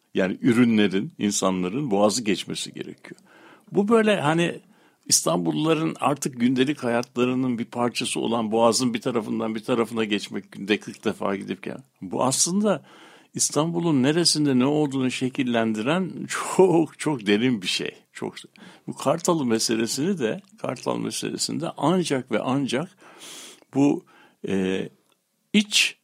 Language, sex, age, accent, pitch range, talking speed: Turkish, male, 60-79, native, 115-170 Hz, 120 wpm